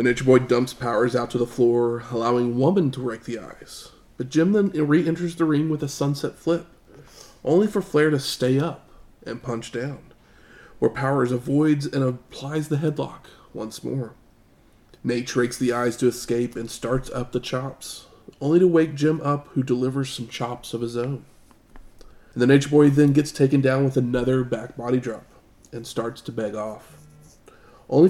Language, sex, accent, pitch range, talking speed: English, male, American, 120-145 Hz, 180 wpm